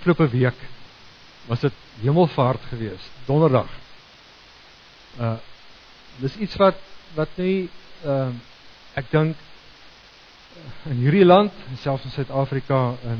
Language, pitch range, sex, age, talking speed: English, 120-155 Hz, male, 50-69, 110 wpm